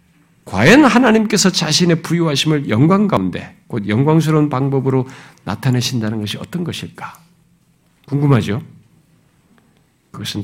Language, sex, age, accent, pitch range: Korean, male, 50-69, native, 140-210 Hz